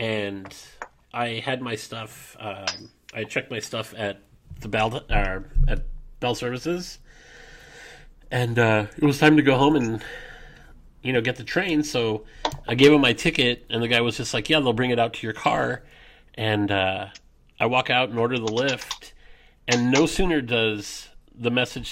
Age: 30-49